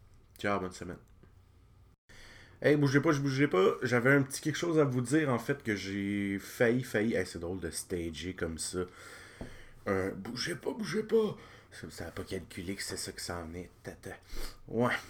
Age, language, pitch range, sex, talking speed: 30-49, French, 100-125 Hz, male, 195 wpm